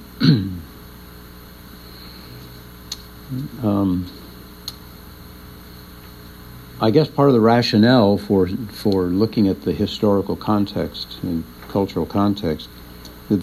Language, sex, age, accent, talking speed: English, male, 60-79, American, 80 wpm